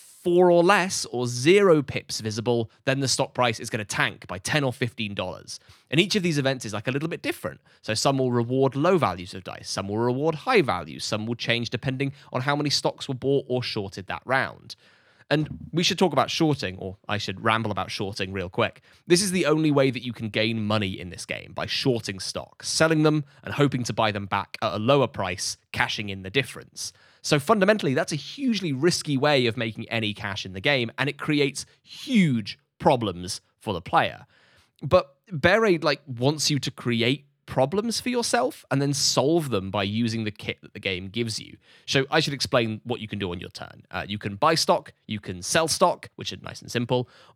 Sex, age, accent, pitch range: male, 20-39, British, 110-150 Hz